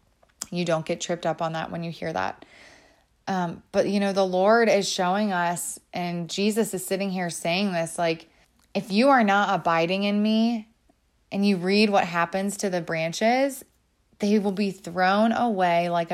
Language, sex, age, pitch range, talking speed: English, female, 20-39, 165-195 Hz, 180 wpm